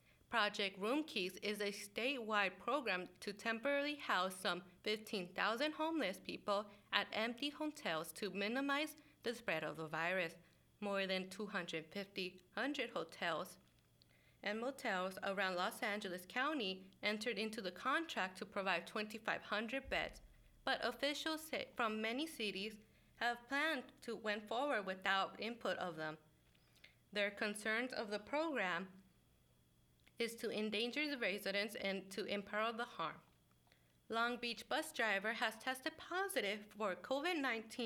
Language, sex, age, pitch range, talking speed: English, female, 30-49, 190-250 Hz, 130 wpm